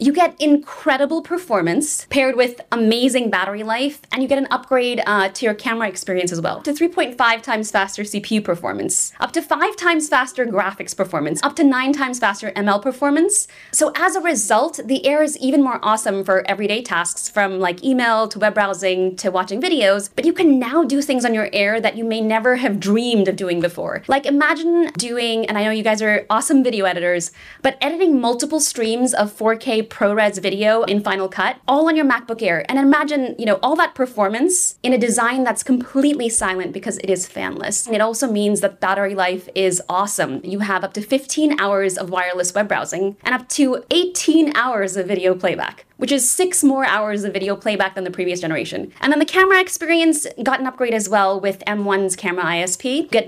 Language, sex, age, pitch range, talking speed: English, female, 20-39, 200-275 Hz, 205 wpm